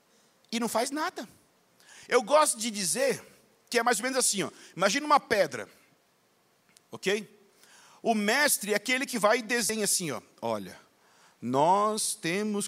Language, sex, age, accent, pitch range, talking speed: Portuguese, male, 50-69, Brazilian, 205-275 Hz, 140 wpm